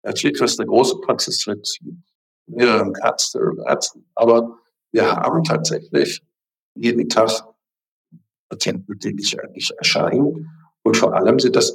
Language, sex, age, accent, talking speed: German, male, 60-79, German, 125 wpm